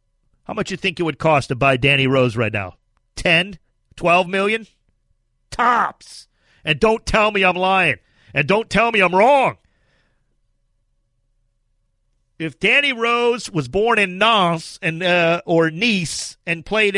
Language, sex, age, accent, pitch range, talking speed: English, male, 40-59, American, 130-195 Hz, 150 wpm